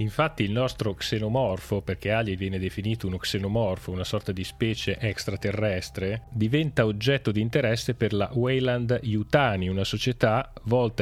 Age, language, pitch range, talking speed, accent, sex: 30-49, Italian, 95-110 Hz, 135 wpm, native, male